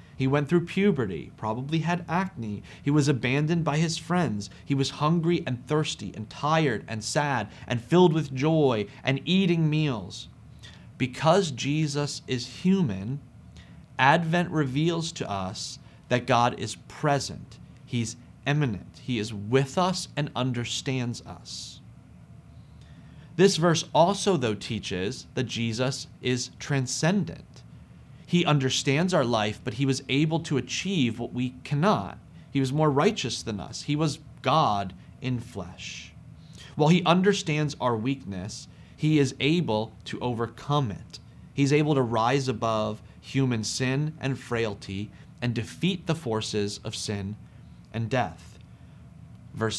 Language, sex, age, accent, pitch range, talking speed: English, male, 30-49, American, 115-155 Hz, 135 wpm